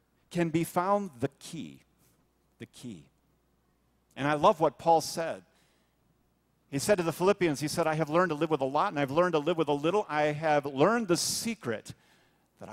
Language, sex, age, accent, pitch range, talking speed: English, male, 50-69, American, 130-170 Hz, 200 wpm